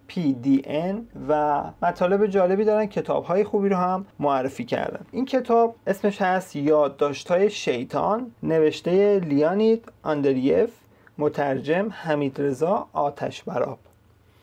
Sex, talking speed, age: male, 105 wpm, 30-49